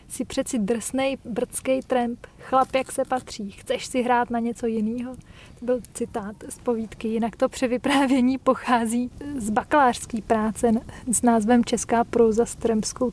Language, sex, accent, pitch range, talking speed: Czech, female, native, 235-265 Hz, 150 wpm